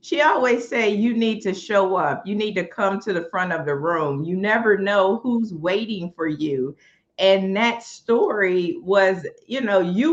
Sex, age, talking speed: female, 50-69, 190 wpm